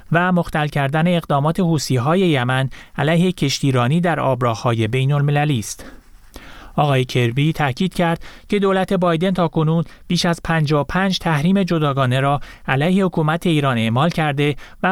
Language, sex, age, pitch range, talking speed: Persian, male, 30-49, 130-170 Hz, 135 wpm